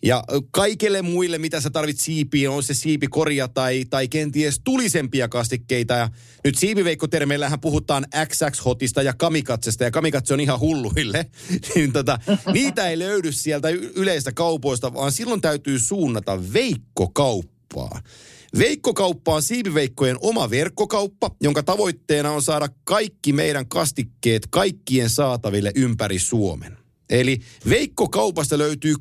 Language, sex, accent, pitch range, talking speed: Finnish, male, native, 130-165 Hz, 125 wpm